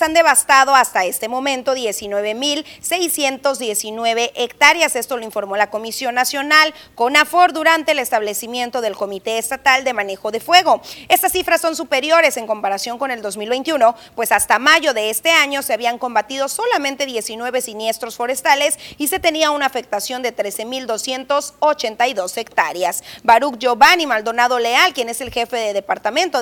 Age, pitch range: 30-49, 235-305 Hz